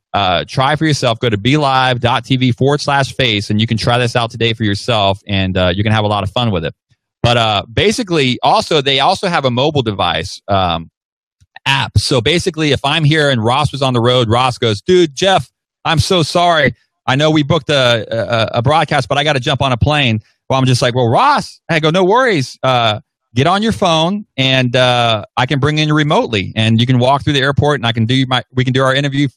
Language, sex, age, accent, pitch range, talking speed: English, male, 30-49, American, 110-140 Hz, 235 wpm